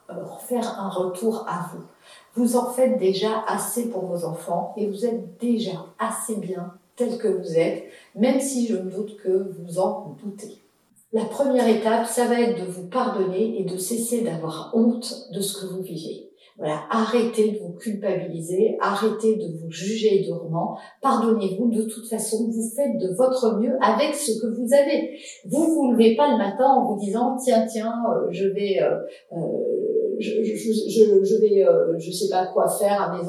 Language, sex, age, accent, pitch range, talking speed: French, female, 50-69, French, 200-265 Hz, 190 wpm